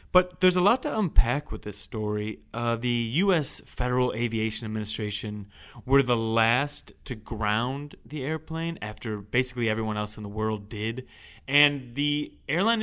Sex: male